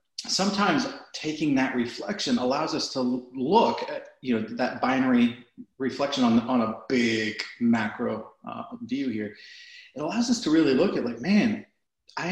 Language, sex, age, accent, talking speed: English, male, 30-49, American, 155 wpm